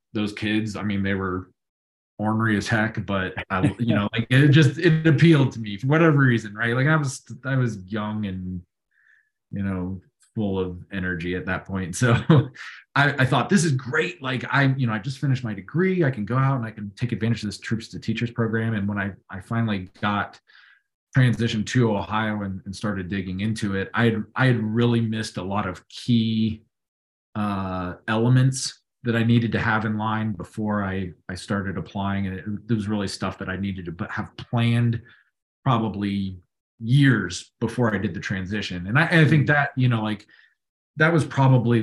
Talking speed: 200 wpm